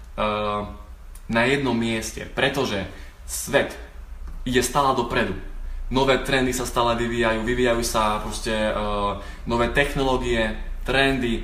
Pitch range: 110-145 Hz